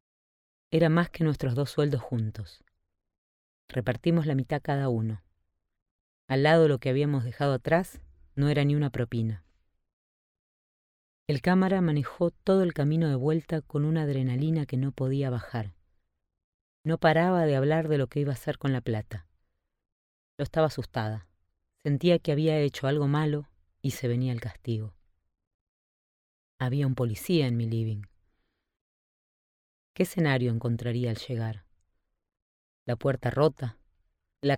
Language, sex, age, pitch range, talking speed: Spanish, female, 30-49, 90-145 Hz, 140 wpm